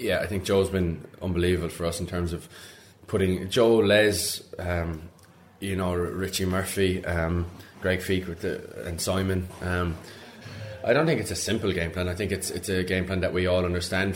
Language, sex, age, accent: English, male, 20-39, Irish